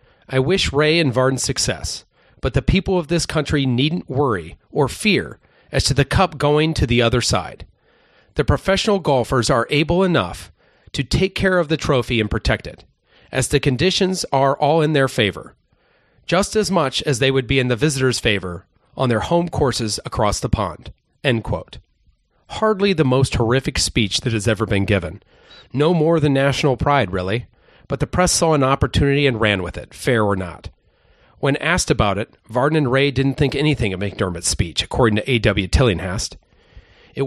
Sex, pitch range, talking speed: male, 105-150 Hz, 185 wpm